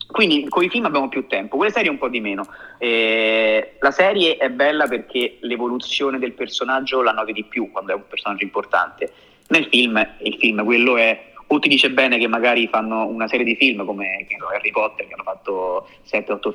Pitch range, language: 110-135 Hz, Italian